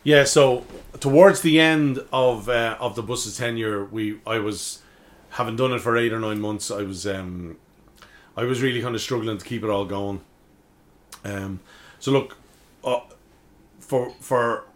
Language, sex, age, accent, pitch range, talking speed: English, male, 30-49, Irish, 105-130 Hz, 170 wpm